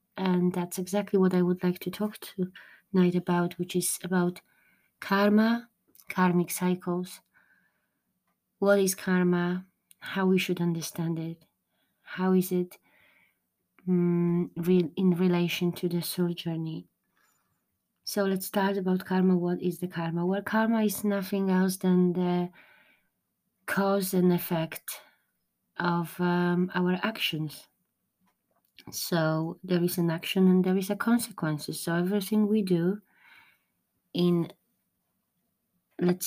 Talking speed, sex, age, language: 125 wpm, female, 20-39, English